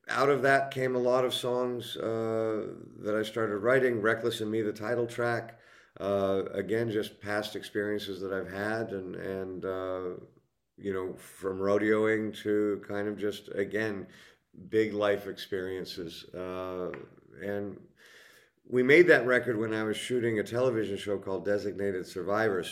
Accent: American